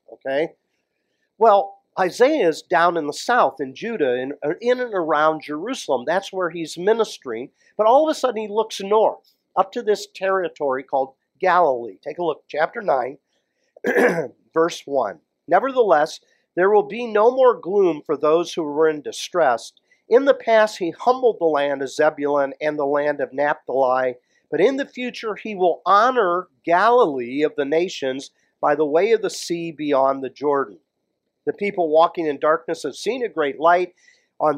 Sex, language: male, English